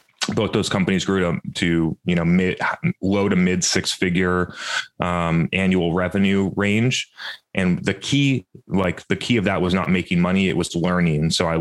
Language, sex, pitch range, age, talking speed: English, male, 85-95 Hz, 30-49, 180 wpm